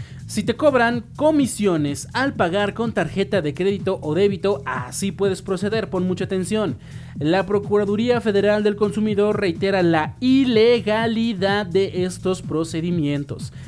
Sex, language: male, Spanish